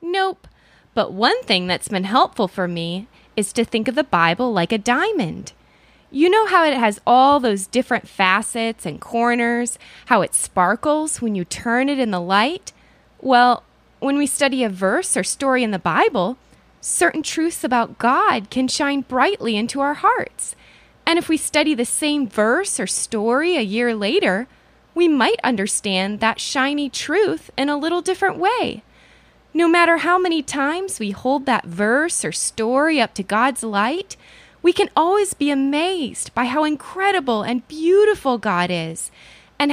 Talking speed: 170 wpm